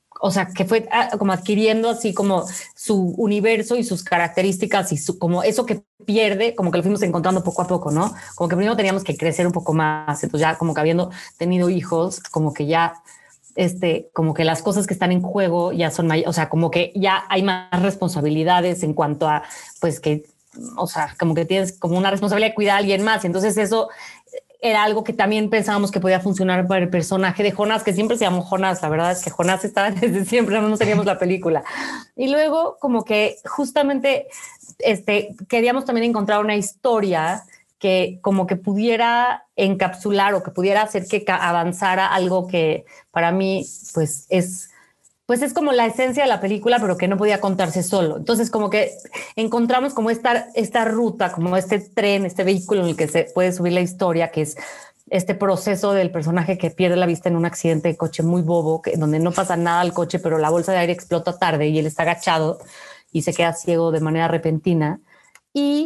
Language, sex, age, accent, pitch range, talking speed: Spanish, female, 30-49, Mexican, 170-215 Hz, 205 wpm